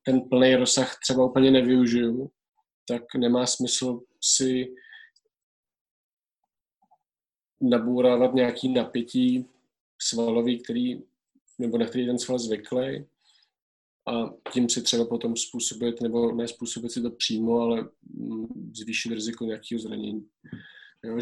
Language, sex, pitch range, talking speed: Slovak, male, 115-130 Hz, 110 wpm